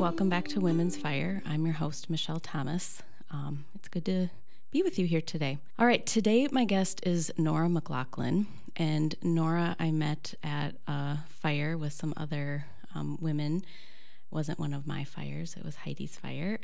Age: 20-39